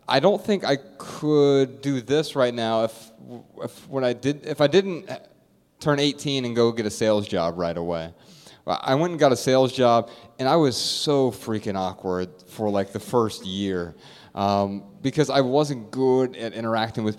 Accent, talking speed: American, 185 wpm